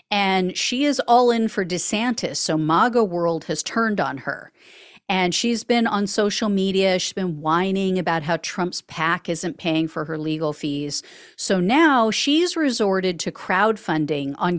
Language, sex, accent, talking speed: English, female, American, 165 wpm